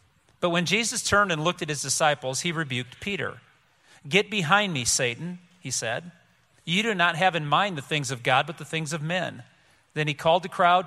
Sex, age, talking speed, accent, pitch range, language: male, 40-59, 210 wpm, American, 140-180 Hz, English